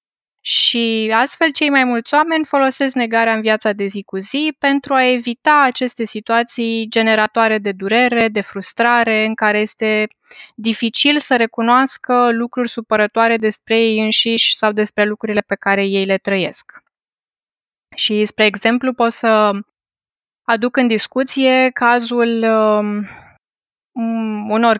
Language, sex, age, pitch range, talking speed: Romanian, female, 20-39, 205-240 Hz, 130 wpm